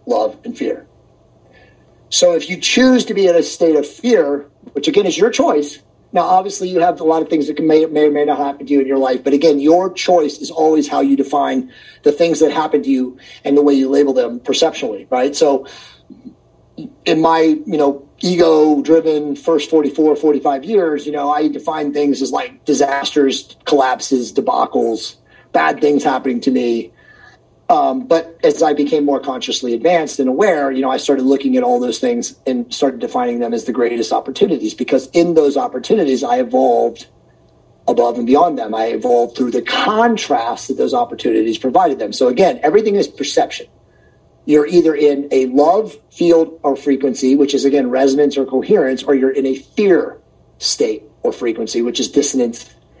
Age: 30-49